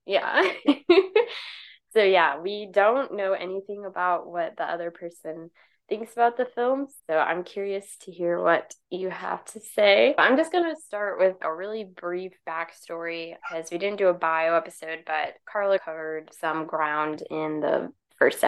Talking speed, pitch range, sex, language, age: 165 wpm, 160-195 Hz, female, English, 10-29